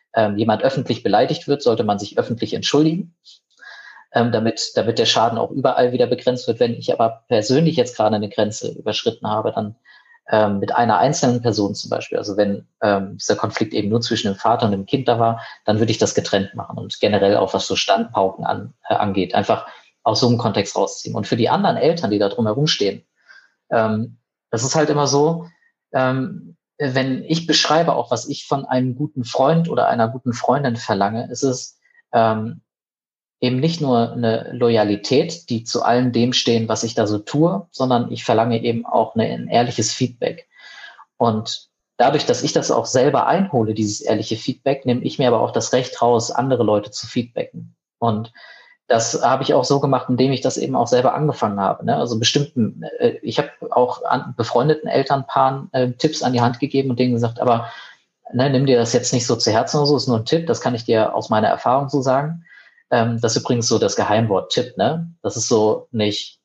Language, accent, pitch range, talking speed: German, German, 115-140 Hz, 200 wpm